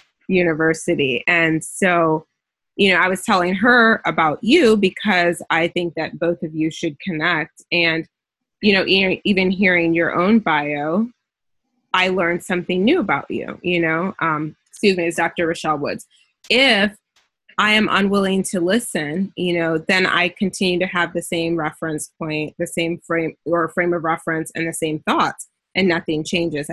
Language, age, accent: English, 20-39, American